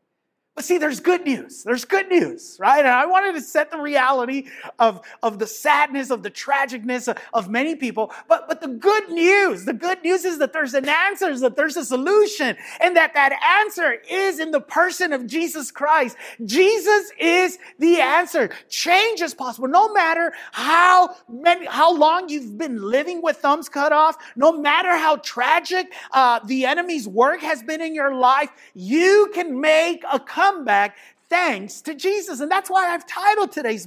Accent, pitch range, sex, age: American, 255-345 Hz, male, 30-49